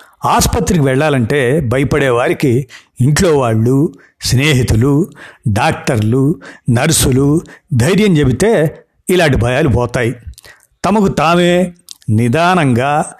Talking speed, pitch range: 75 wpm, 125-165 Hz